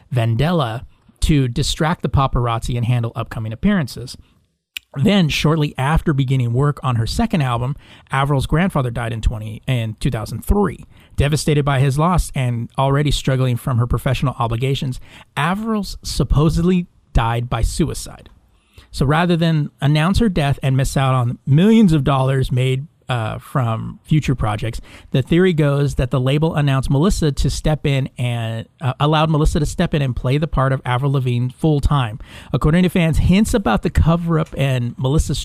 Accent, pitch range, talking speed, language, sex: American, 120-155 Hz, 160 wpm, English, male